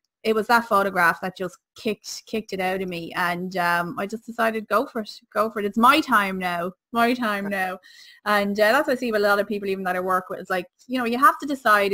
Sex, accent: female, Irish